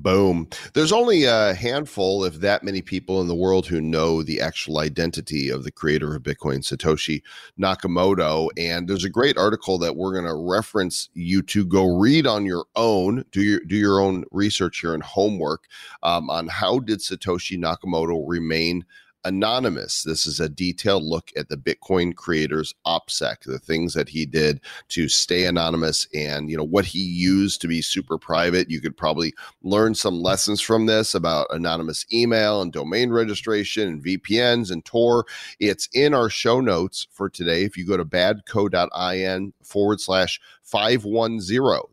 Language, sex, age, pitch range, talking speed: English, male, 40-59, 80-100 Hz, 170 wpm